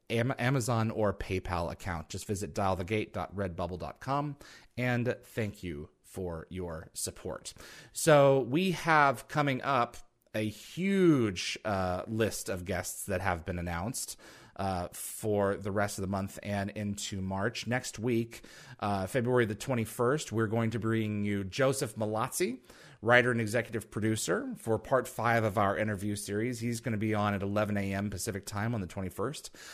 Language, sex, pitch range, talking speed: English, male, 100-125 Hz, 150 wpm